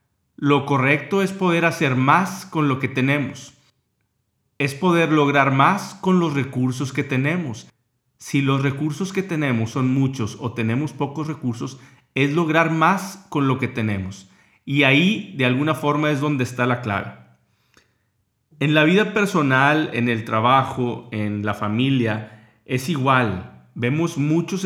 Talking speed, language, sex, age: 150 wpm, Spanish, male, 40-59